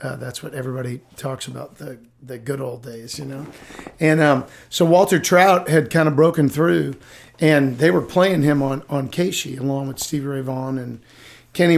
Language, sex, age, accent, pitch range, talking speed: English, male, 40-59, American, 125-155 Hz, 195 wpm